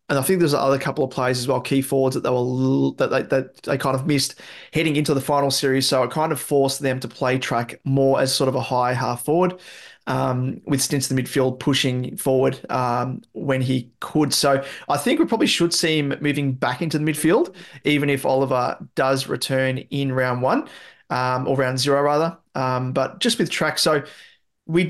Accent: Australian